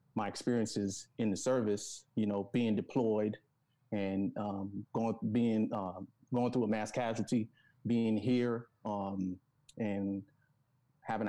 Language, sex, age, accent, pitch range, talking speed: English, male, 30-49, American, 105-130 Hz, 135 wpm